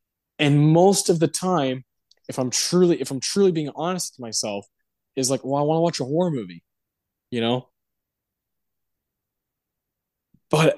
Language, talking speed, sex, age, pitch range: English, 155 wpm, male, 20-39, 120-160 Hz